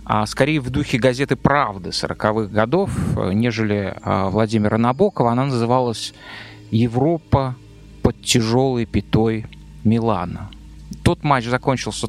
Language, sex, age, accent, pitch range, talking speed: Russian, male, 20-39, native, 105-140 Hz, 100 wpm